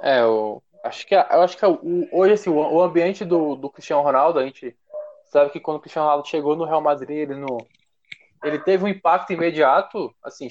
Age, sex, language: 20-39, male, Portuguese